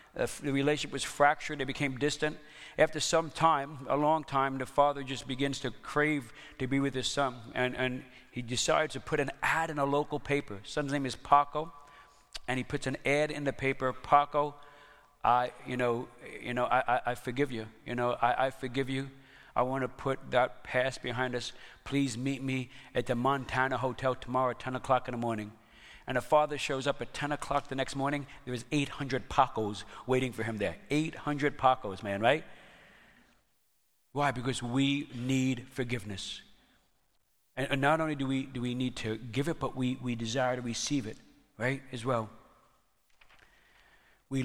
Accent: American